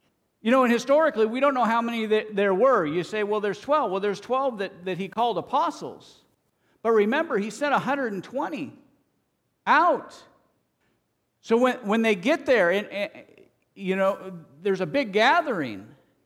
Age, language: 50-69, English